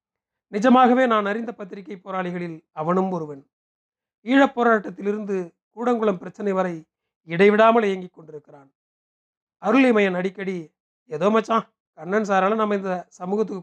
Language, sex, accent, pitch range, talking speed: Tamil, male, native, 175-215 Hz, 105 wpm